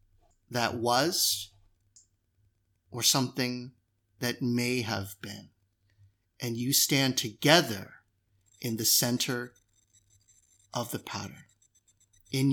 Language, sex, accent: English, male, American